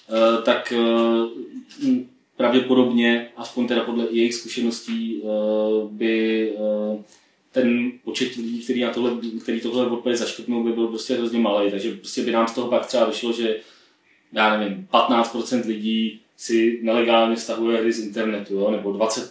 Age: 20-39